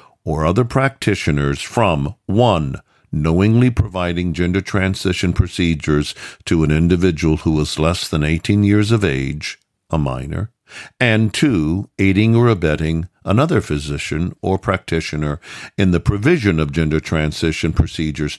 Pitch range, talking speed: 80-110 Hz, 125 wpm